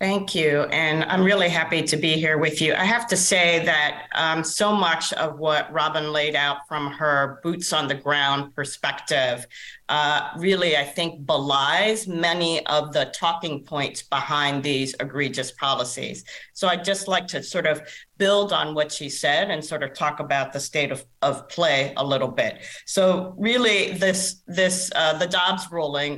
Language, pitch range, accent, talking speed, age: English, 140-175 Hz, American, 180 wpm, 40-59